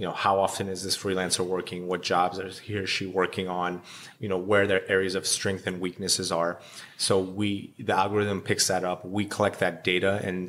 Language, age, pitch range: English, 30-49, 90-100 Hz